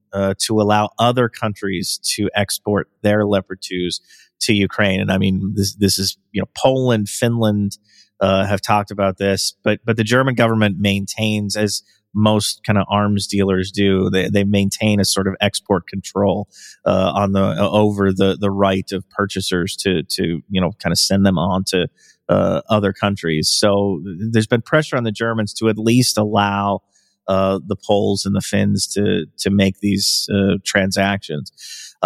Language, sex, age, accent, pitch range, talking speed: English, male, 30-49, American, 100-110 Hz, 180 wpm